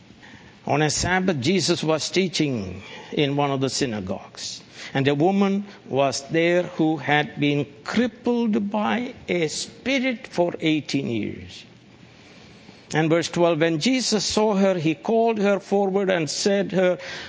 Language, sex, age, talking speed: English, male, 60-79, 140 wpm